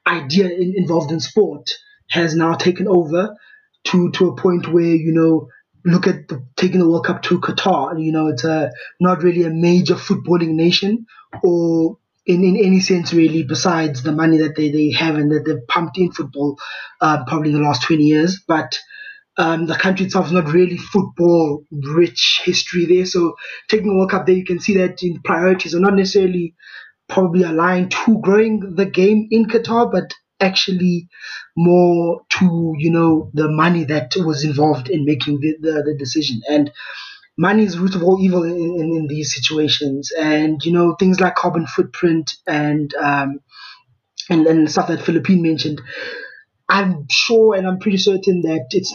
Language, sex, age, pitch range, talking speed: English, male, 20-39, 155-185 Hz, 180 wpm